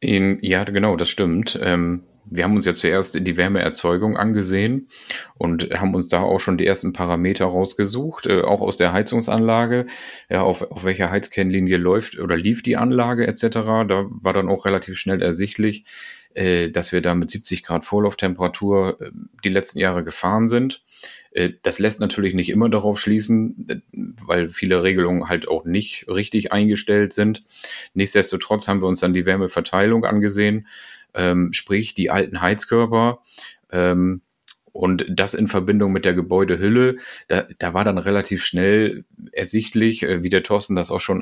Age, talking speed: 30-49, 155 wpm